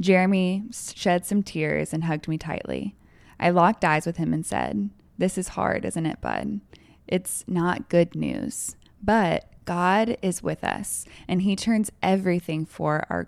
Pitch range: 165-195 Hz